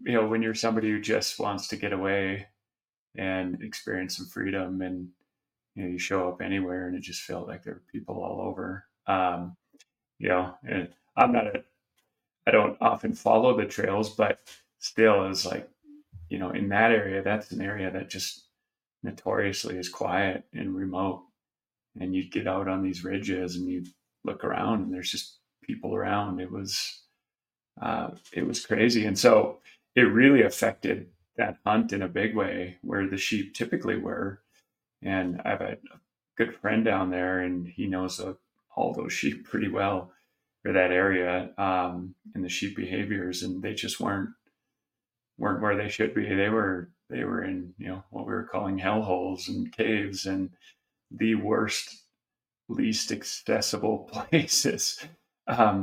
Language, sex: English, male